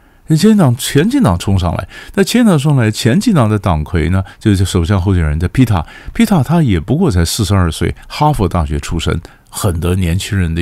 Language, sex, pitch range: Chinese, male, 85-105 Hz